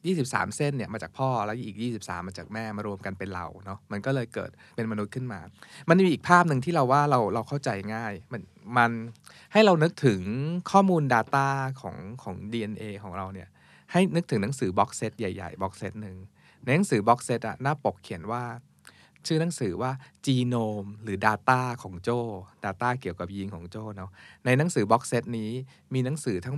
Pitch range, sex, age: 100-135 Hz, male, 20-39